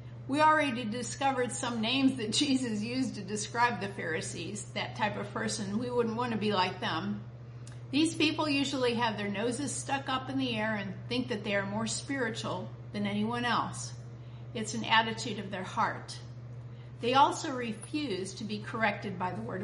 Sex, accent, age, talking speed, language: female, American, 50-69, 180 wpm, English